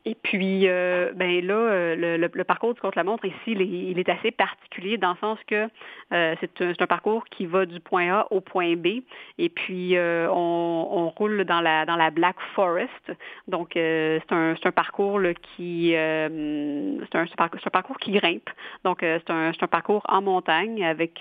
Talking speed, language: 220 wpm, French